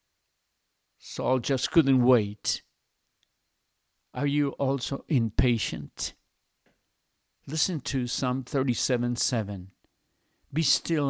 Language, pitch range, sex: Spanish, 105-135 Hz, male